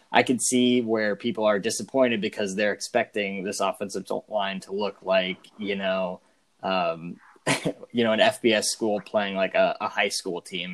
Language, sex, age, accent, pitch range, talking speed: English, male, 20-39, American, 100-120 Hz, 175 wpm